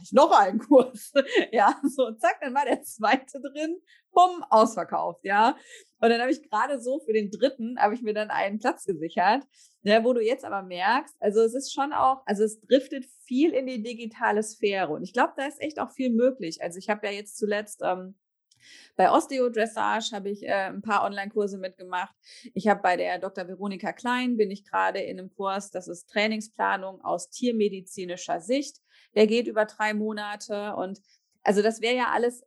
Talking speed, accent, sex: 195 wpm, German, female